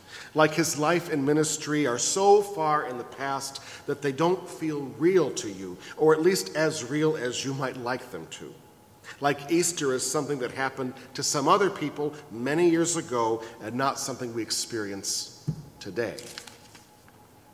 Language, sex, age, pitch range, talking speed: English, male, 50-69, 120-165 Hz, 165 wpm